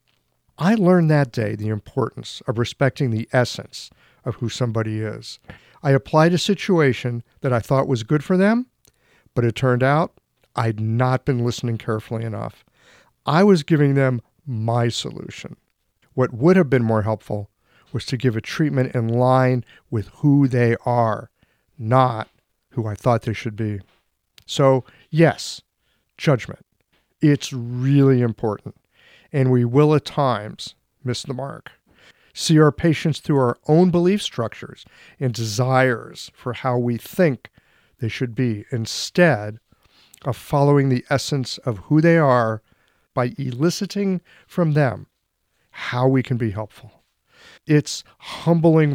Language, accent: English, American